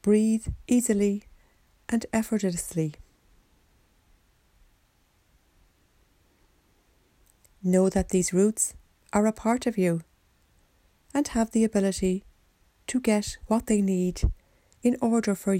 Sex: female